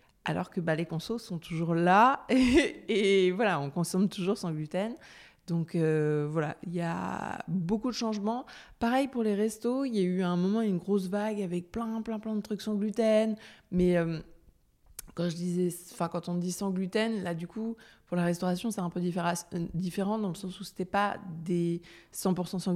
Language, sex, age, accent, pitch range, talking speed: French, female, 20-39, French, 170-205 Hz, 205 wpm